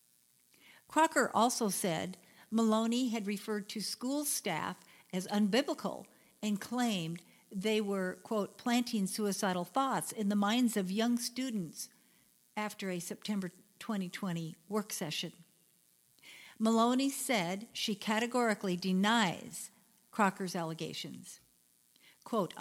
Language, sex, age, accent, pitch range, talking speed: English, female, 50-69, American, 185-225 Hz, 105 wpm